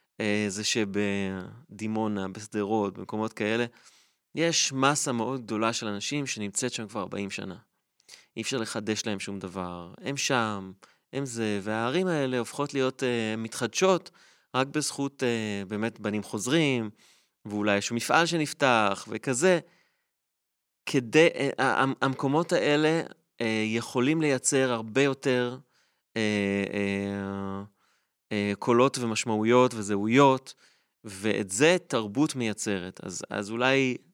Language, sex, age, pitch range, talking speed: Hebrew, male, 30-49, 105-130 Hz, 110 wpm